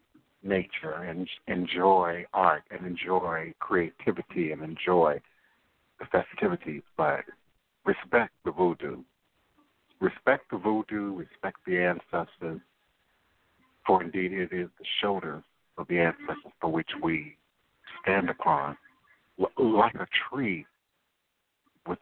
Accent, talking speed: American, 105 wpm